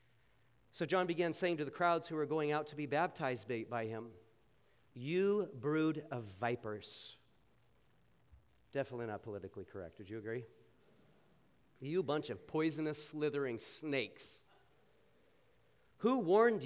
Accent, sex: American, male